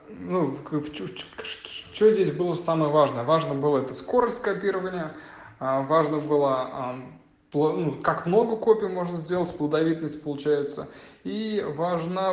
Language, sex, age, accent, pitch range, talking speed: Russian, male, 20-39, native, 140-180 Hz, 110 wpm